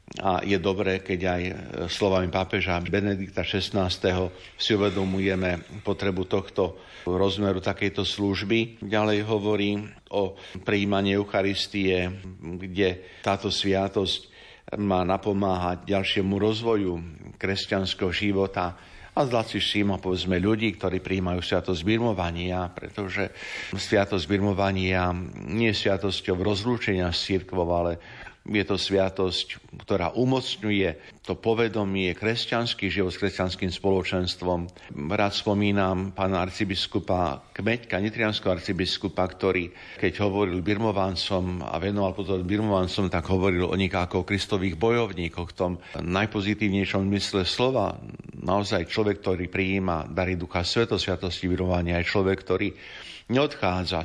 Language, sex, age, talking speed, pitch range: Slovak, male, 50-69, 110 wpm, 90-100 Hz